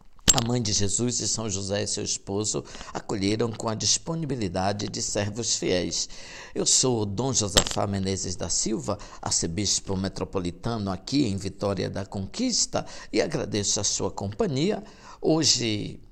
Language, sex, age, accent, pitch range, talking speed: Portuguese, male, 60-79, Brazilian, 100-125 Hz, 140 wpm